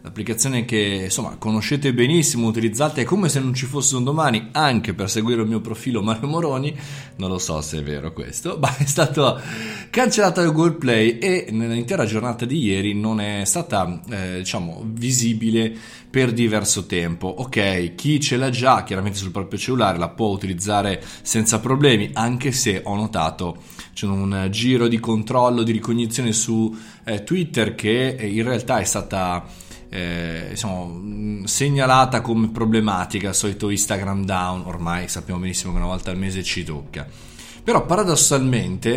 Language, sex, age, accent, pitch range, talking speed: Italian, male, 20-39, native, 100-125 Hz, 155 wpm